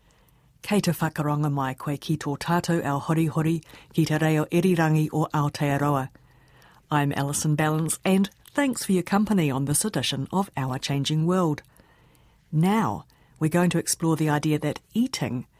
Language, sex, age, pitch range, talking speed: English, female, 50-69, 145-190 Hz, 130 wpm